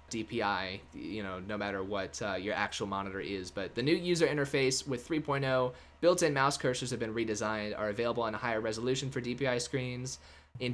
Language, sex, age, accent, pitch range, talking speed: English, male, 20-39, American, 105-130 Hz, 190 wpm